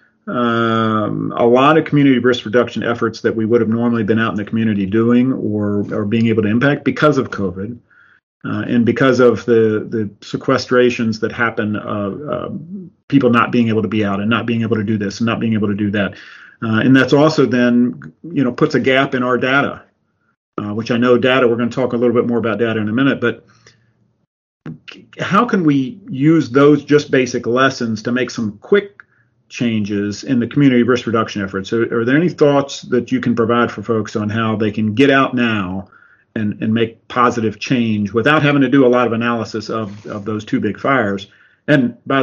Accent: American